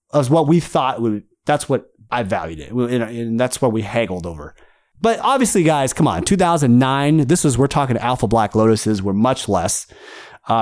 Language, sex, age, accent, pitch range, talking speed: English, male, 30-49, American, 120-175 Hz, 200 wpm